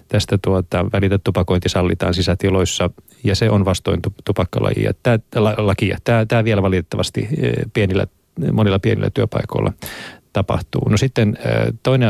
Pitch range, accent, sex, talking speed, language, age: 95-115 Hz, native, male, 125 wpm, Finnish, 30-49